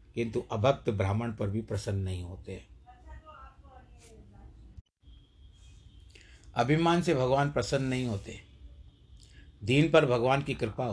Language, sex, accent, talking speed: Hindi, male, native, 105 wpm